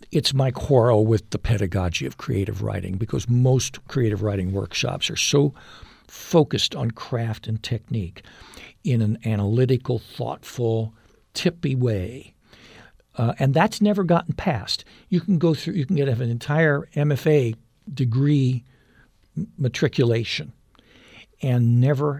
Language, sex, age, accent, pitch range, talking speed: English, male, 60-79, American, 110-155 Hz, 125 wpm